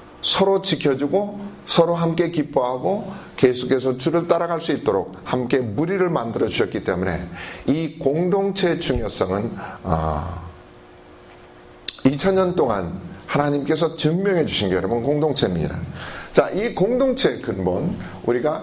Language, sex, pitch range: Korean, male, 115-170 Hz